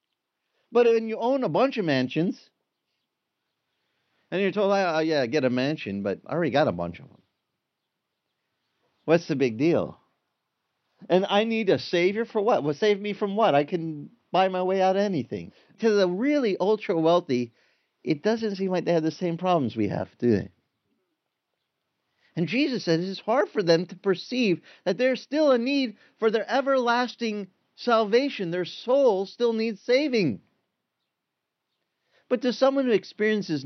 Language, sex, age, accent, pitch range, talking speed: English, male, 40-59, American, 130-215 Hz, 165 wpm